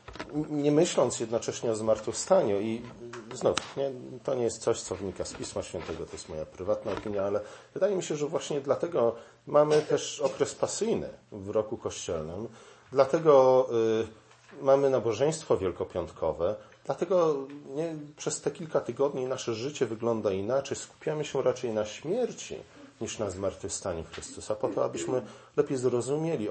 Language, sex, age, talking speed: Polish, male, 40-59, 140 wpm